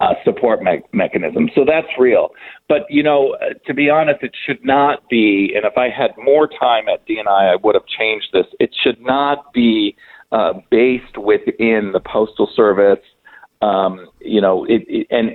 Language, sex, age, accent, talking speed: English, male, 40-59, American, 185 wpm